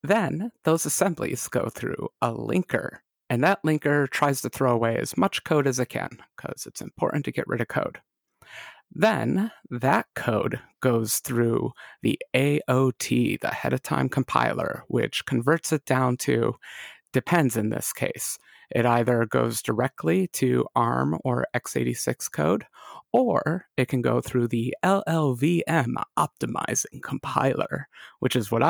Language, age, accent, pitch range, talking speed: English, 30-49, American, 120-160 Hz, 145 wpm